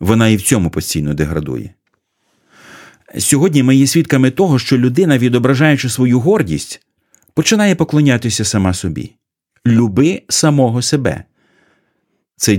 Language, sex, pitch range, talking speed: Ukrainian, male, 90-130 Hz, 115 wpm